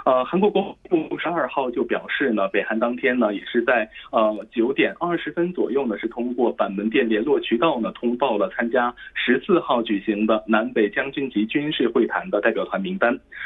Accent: Chinese